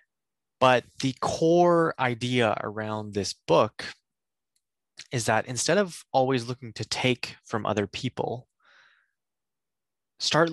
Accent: American